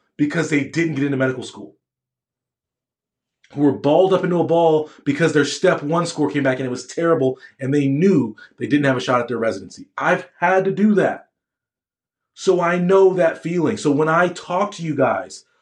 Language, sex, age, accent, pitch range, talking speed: English, male, 30-49, American, 135-180 Hz, 205 wpm